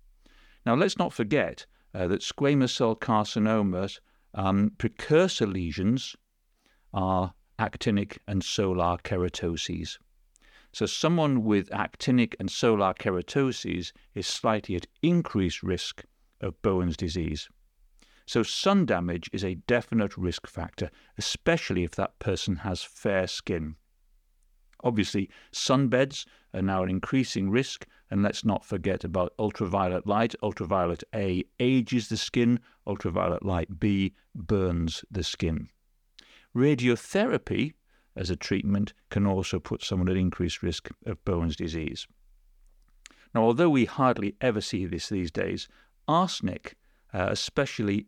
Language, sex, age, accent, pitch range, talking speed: English, male, 50-69, British, 90-120 Hz, 120 wpm